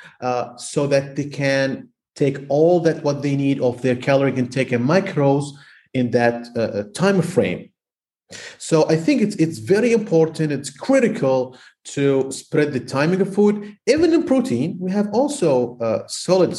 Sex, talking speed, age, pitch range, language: male, 165 wpm, 40-59, 125-195 Hz, English